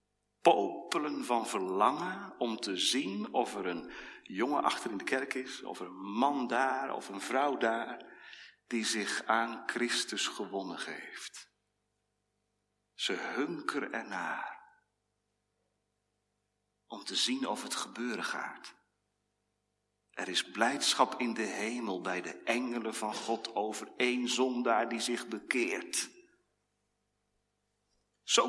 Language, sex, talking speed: Dutch, male, 120 wpm